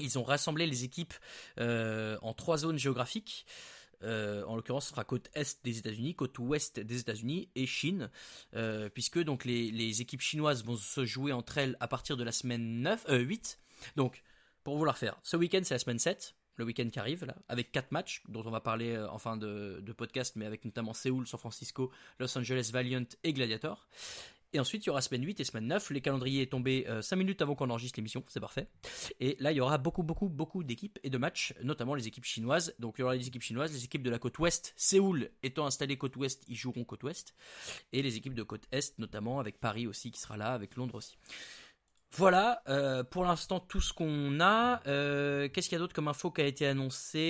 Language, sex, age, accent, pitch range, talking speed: French, male, 20-39, French, 120-150 Hz, 230 wpm